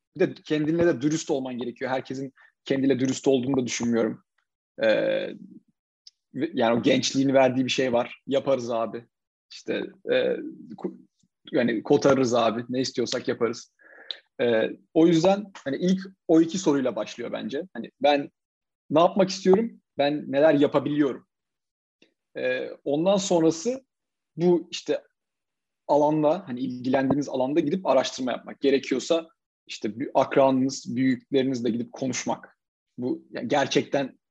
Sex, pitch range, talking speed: male, 135-180 Hz, 120 wpm